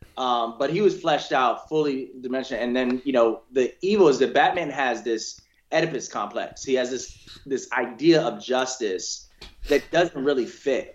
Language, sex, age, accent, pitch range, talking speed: English, male, 20-39, American, 115-165 Hz, 175 wpm